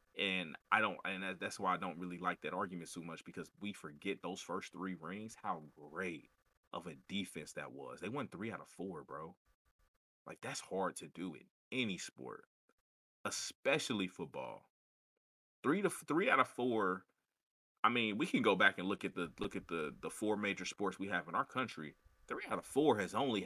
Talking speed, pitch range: 200 wpm, 90-145 Hz